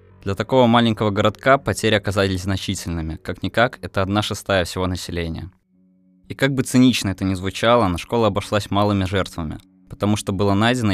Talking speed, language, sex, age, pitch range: 160 wpm, Russian, male, 20-39, 95-105 Hz